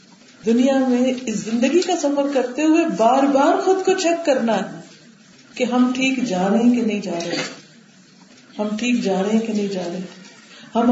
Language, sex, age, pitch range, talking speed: Urdu, female, 50-69, 200-255 Hz, 175 wpm